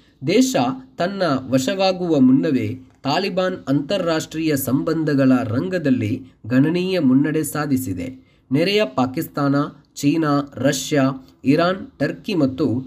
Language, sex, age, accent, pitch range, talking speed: Kannada, male, 20-39, native, 130-165 Hz, 85 wpm